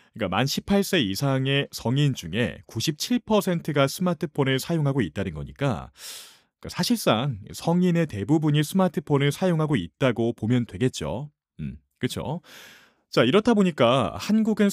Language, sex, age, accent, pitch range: Korean, male, 30-49, native, 125-180 Hz